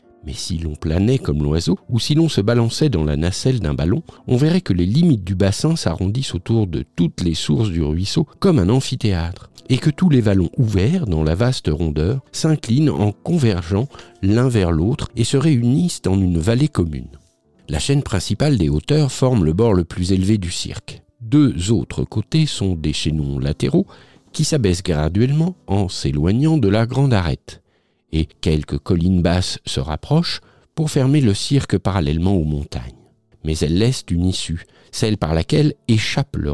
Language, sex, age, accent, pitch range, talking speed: French, male, 50-69, French, 85-130 Hz, 175 wpm